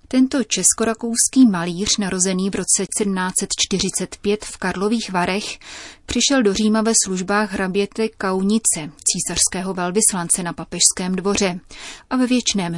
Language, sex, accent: Czech, female, native